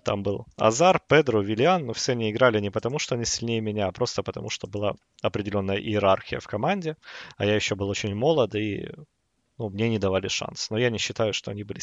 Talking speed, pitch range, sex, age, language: 220 wpm, 105-125 Hz, male, 20-39, Russian